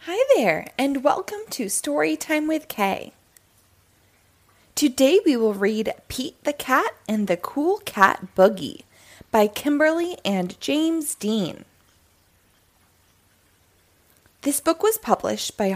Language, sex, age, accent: English, female, 20-39, American